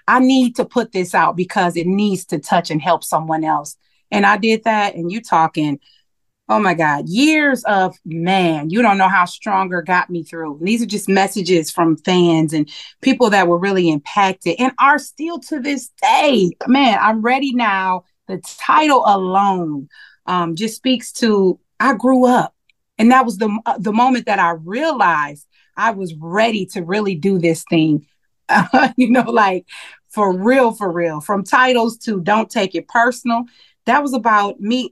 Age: 30-49